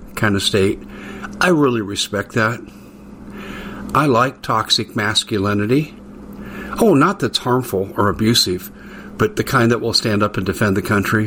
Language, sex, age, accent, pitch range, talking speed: English, male, 60-79, American, 105-145 Hz, 150 wpm